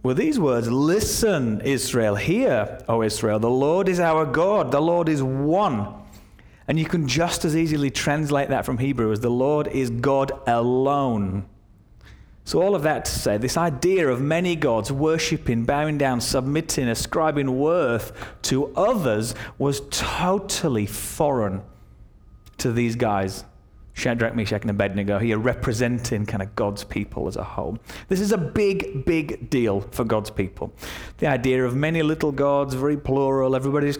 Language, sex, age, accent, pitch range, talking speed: English, male, 30-49, British, 115-145 Hz, 155 wpm